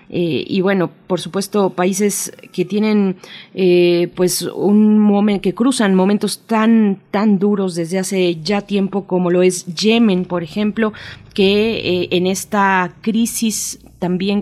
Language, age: Spanish, 30-49